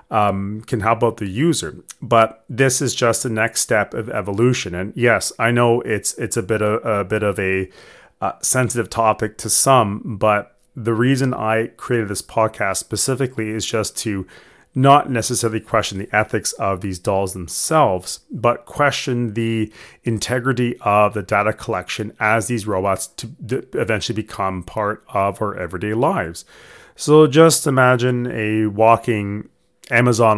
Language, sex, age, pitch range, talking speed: English, male, 30-49, 100-120 Hz, 150 wpm